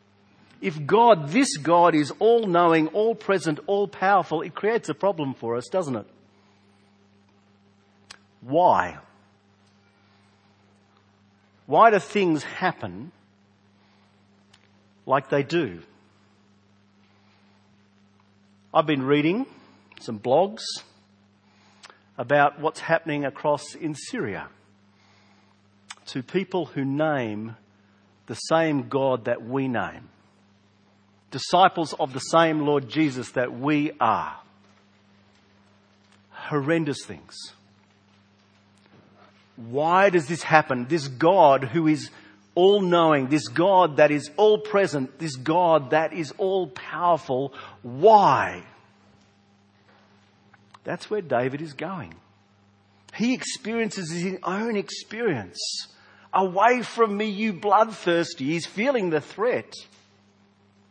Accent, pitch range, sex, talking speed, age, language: Australian, 100-165 Hz, male, 95 wpm, 50-69, English